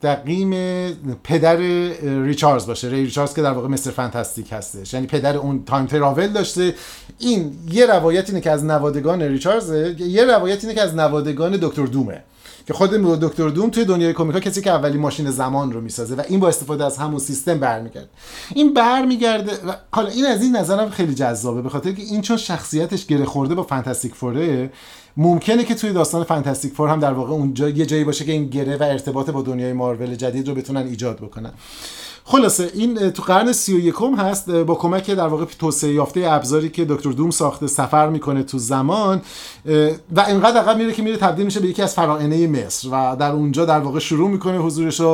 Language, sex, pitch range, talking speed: Persian, male, 140-185 Hz, 190 wpm